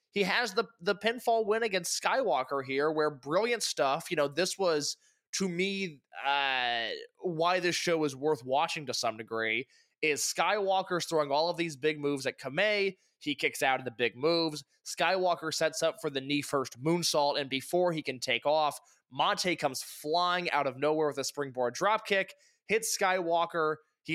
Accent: American